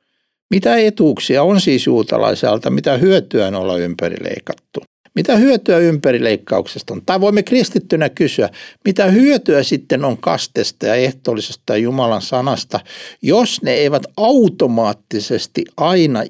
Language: Finnish